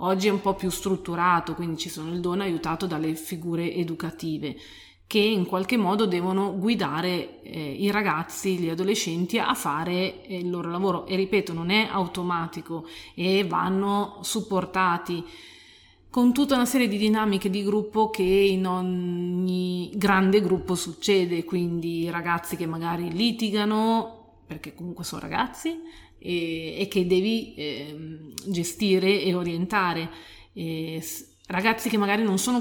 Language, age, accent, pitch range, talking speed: Italian, 30-49, native, 170-200 Hz, 140 wpm